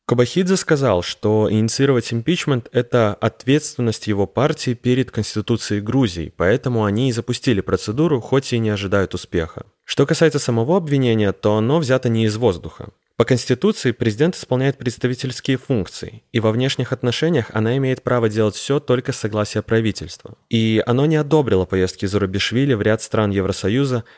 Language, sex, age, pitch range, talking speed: Russian, male, 20-39, 105-135 Hz, 150 wpm